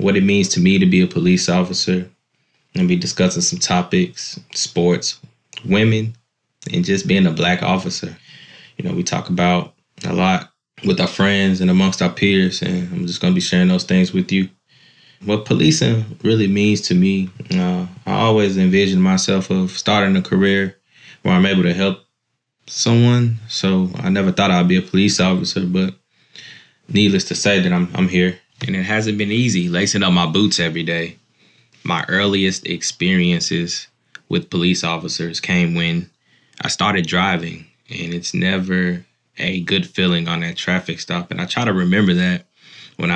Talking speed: 170 wpm